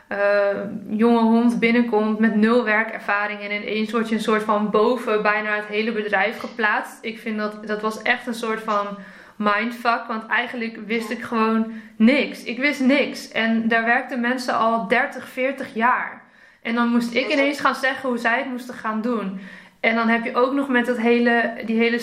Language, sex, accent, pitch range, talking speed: Dutch, female, Dutch, 220-255 Hz, 190 wpm